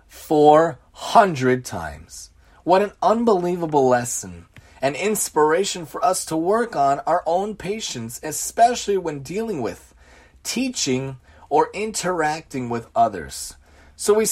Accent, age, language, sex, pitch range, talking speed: American, 30-49, English, male, 150-225 Hz, 115 wpm